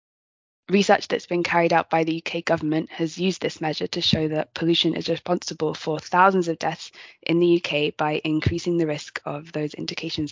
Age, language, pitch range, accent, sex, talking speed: 20-39, English, 160-175 Hz, British, female, 190 wpm